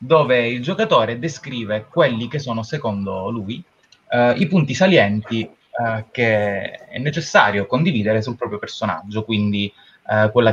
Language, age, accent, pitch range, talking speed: Italian, 20-39, native, 110-150 Hz, 135 wpm